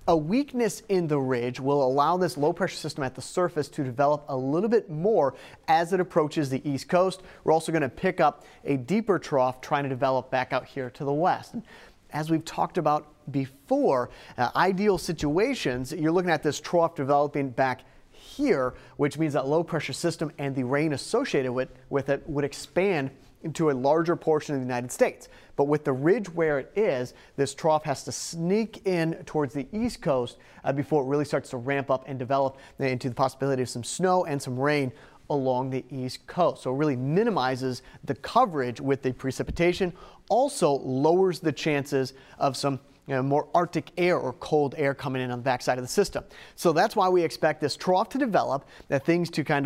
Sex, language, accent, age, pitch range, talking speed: male, English, American, 30-49, 135-165 Hz, 200 wpm